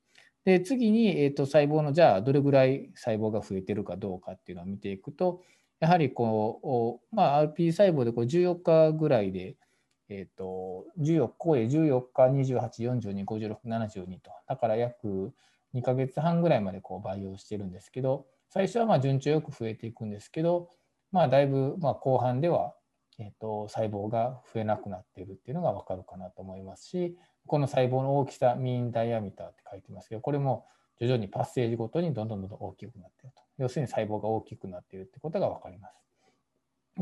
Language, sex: Japanese, male